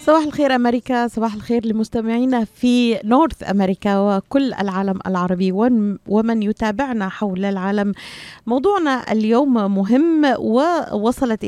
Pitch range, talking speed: 190-255 Hz, 105 wpm